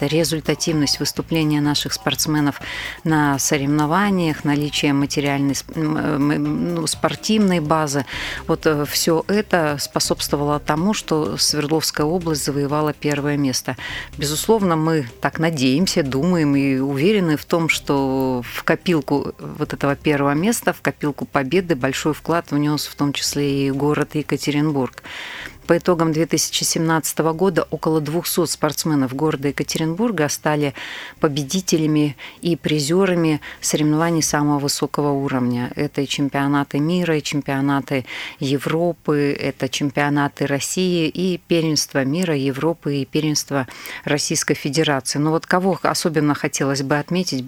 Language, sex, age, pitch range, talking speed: Russian, female, 30-49, 140-160 Hz, 120 wpm